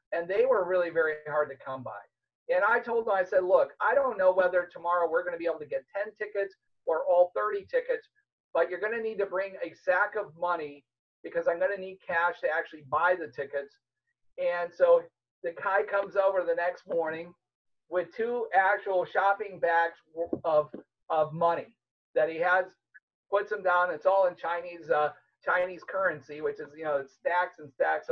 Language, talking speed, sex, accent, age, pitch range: English, 200 wpm, male, American, 50-69, 170-230 Hz